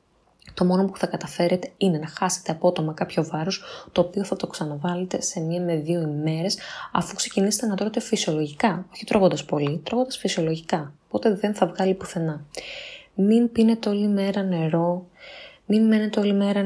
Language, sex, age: Greek, female, 20-39